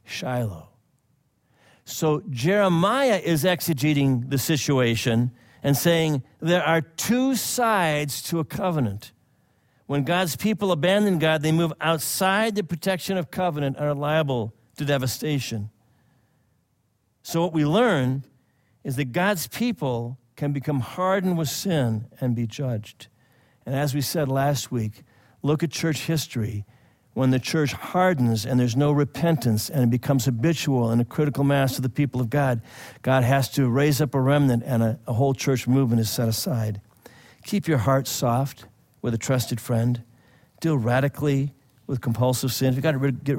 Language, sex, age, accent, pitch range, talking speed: English, male, 60-79, American, 120-150 Hz, 155 wpm